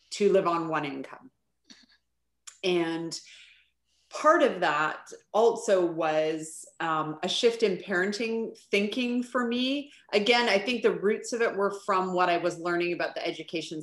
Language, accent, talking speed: English, American, 150 wpm